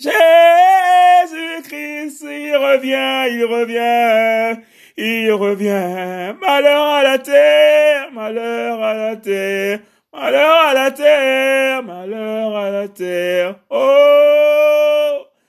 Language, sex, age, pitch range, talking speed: French, male, 30-49, 165-235 Hz, 95 wpm